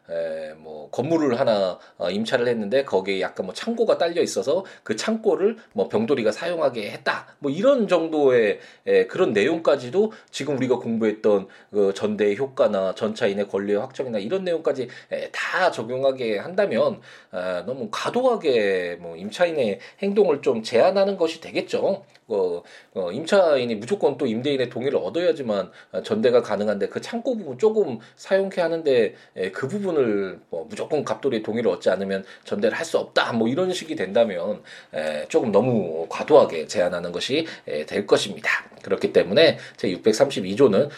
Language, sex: Korean, male